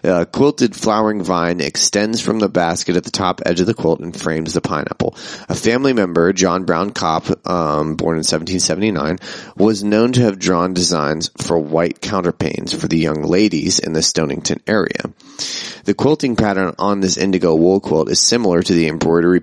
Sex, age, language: male, 30-49, English